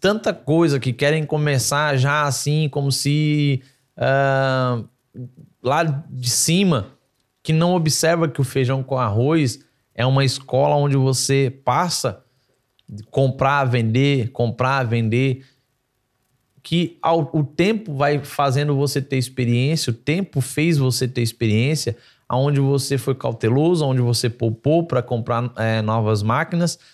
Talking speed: 120 wpm